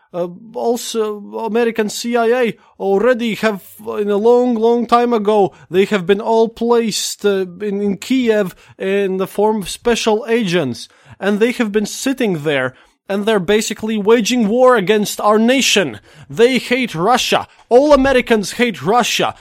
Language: English